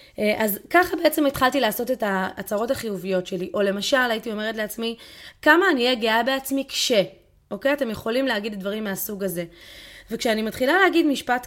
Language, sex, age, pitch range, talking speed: Hebrew, female, 20-39, 200-265 Hz, 165 wpm